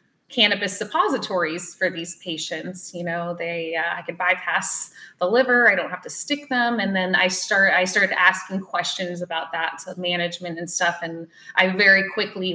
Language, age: English, 20-39